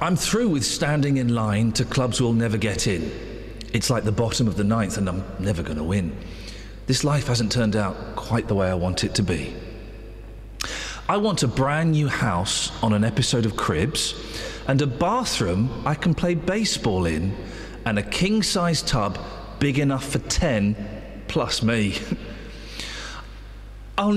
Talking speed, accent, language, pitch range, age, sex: 165 wpm, British, English, 105-175 Hz, 40-59, male